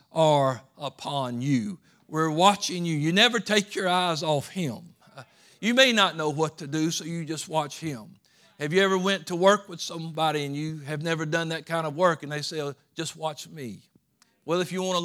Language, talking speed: English, 215 wpm